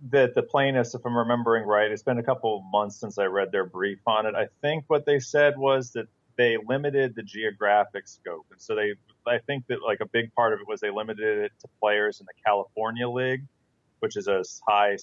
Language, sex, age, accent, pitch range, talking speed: English, male, 40-59, American, 110-130 Hz, 230 wpm